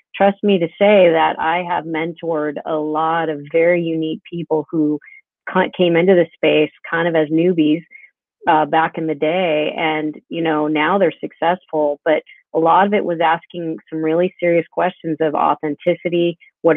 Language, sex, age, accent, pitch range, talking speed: English, female, 40-59, American, 160-180 Hz, 170 wpm